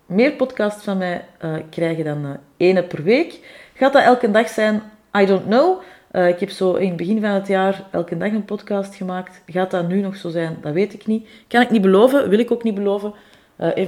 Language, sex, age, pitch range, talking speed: Dutch, female, 30-49, 160-205 Hz, 220 wpm